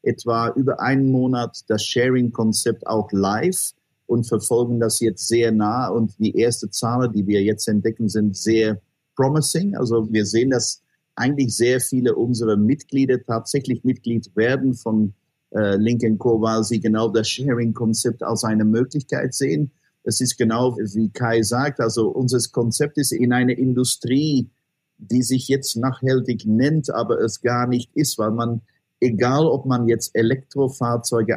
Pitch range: 110-130 Hz